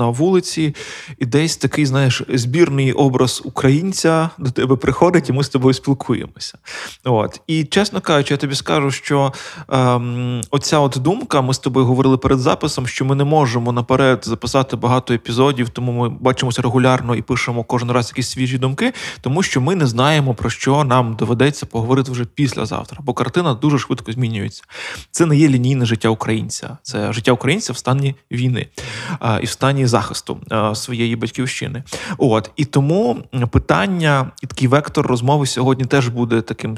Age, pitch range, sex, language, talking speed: 20-39, 125-150 Hz, male, Ukrainian, 165 wpm